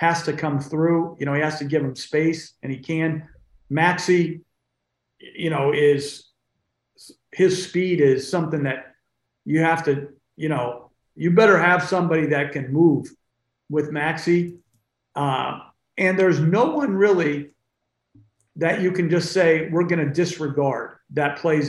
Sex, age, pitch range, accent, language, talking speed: male, 50-69, 140-175 Hz, American, English, 150 wpm